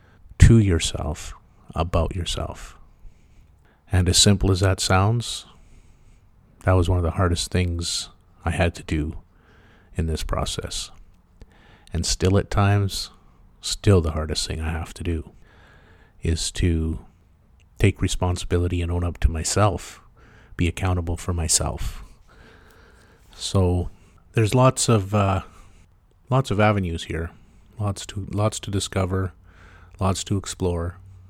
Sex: male